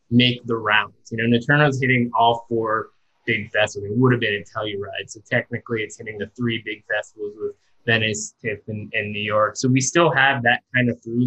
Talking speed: 215 wpm